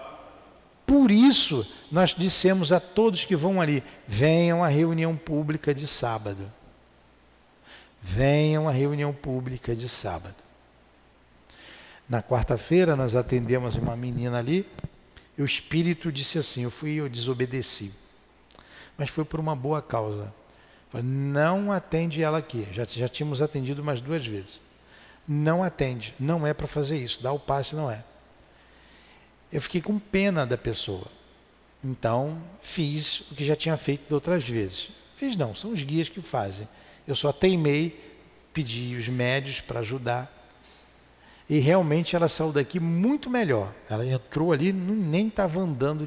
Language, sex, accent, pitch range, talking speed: Portuguese, male, Brazilian, 120-160 Hz, 145 wpm